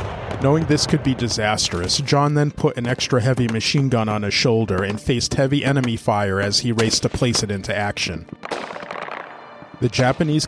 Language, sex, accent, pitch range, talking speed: English, male, American, 105-135 Hz, 180 wpm